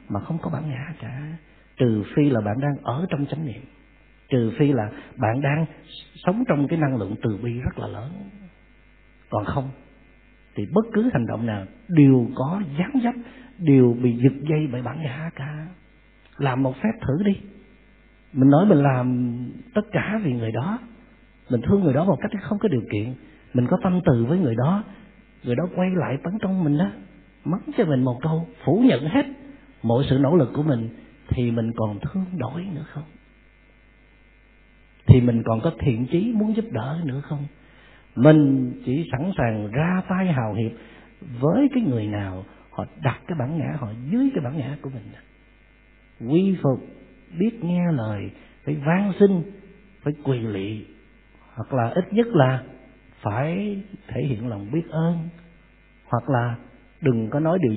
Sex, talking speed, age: male, 180 wpm, 50-69